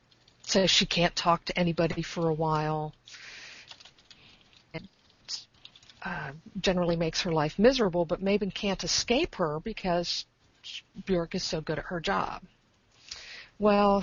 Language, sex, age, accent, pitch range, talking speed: English, female, 50-69, American, 160-190 Hz, 130 wpm